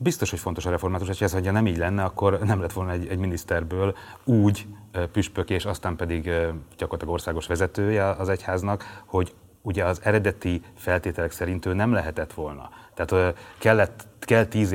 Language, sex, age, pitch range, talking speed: Hungarian, male, 30-49, 85-105 Hz, 165 wpm